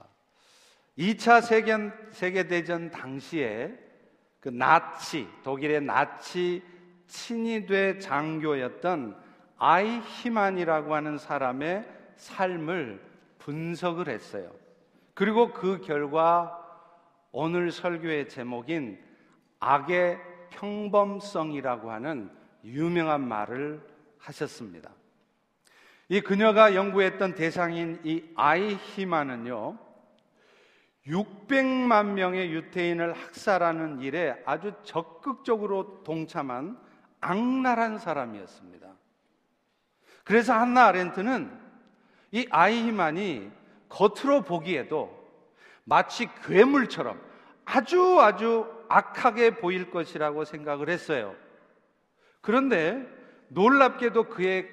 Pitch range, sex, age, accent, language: 160-225 Hz, male, 50-69, native, Korean